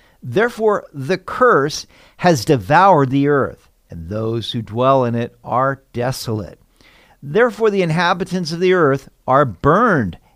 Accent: American